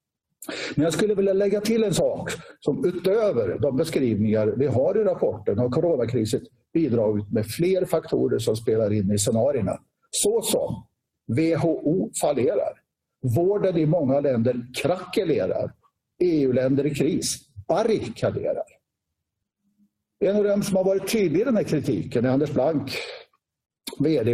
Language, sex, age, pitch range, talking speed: Swedish, male, 50-69, 130-195 Hz, 135 wpm